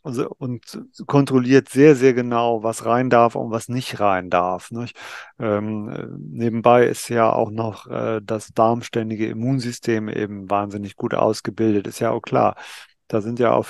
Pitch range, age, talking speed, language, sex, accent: 110-130 Hz, 40-59, 155 wpm, German, male, German